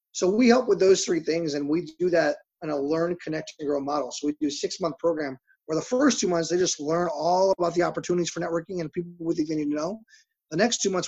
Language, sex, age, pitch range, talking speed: English, male, 30-49, 155-185 Hz, 265 wpm